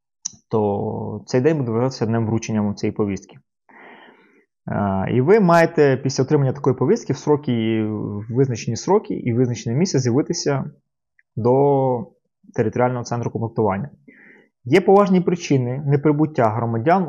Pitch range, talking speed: 115-150 Hz, 120 wpm